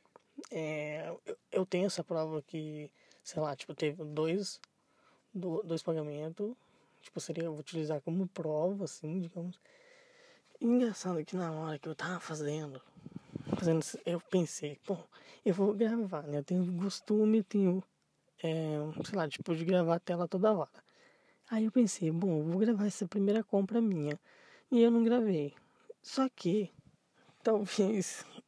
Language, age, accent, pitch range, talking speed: Portuguese, 20-39, Brazilian, 160-220 Hz, 155 wpm